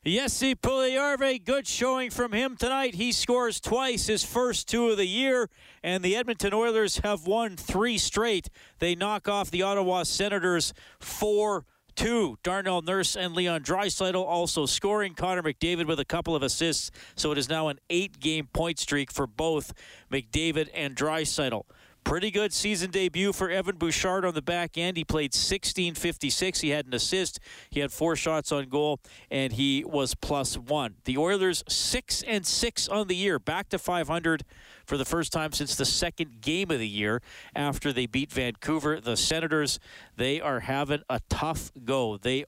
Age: 40-59